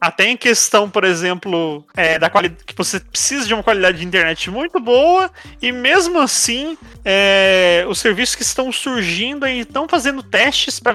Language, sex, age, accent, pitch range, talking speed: Portuguese, male, 30-49, Brazilian, 185-260 Hz, 170 wpm